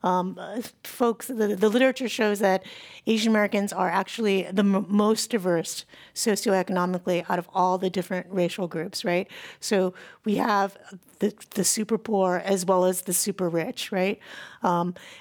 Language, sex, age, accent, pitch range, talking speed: English, female, 30-49, American, 185-225 Hz, 155 wpm